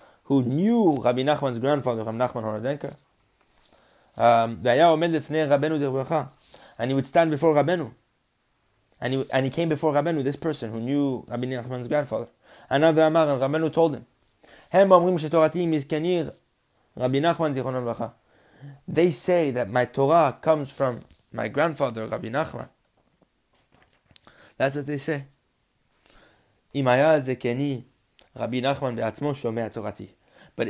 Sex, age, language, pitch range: male, 20-39, English, 105-140 Hz